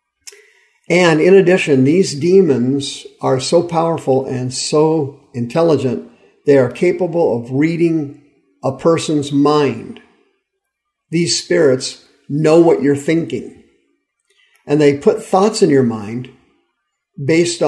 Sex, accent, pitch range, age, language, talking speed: male, American, 135-190 Hz, 50-69, English, 110 wpm